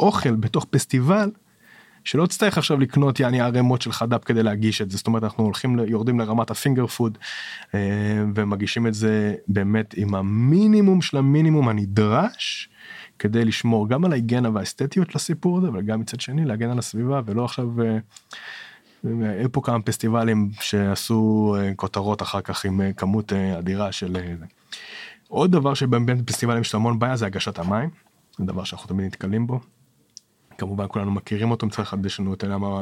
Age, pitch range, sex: 20-39, 100-120 Hz, male